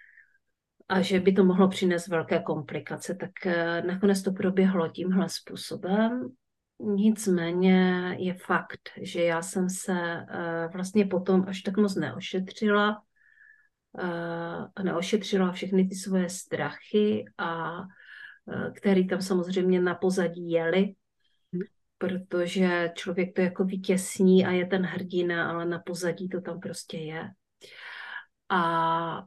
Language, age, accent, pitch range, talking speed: Czech, 40-59, native, 170-195 Hz, 115 wpm